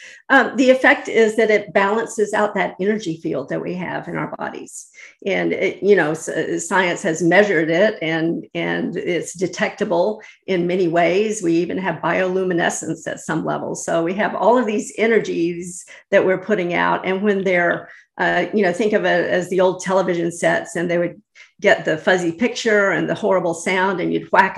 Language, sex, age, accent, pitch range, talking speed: English, female, 50-69, American, 175-210 Hz, 190 wpm